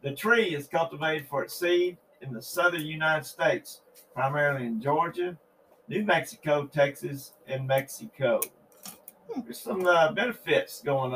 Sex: male